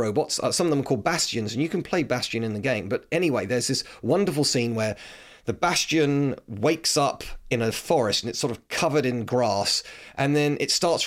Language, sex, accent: English, male, British